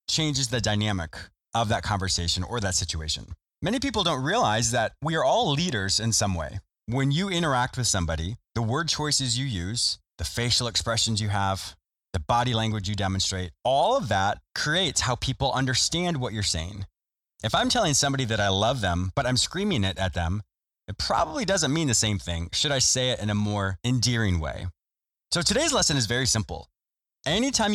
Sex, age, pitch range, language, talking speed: male, 20-39, 95-140 Hz, English, 190 wpm